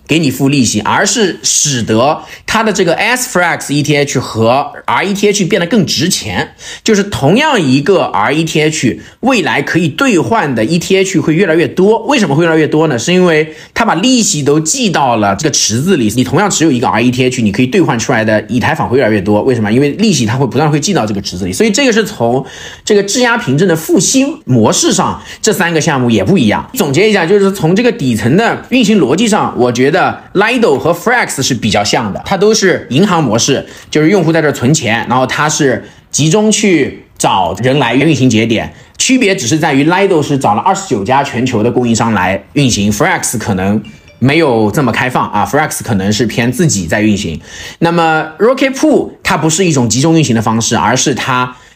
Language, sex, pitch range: English, male, 120-190 Hz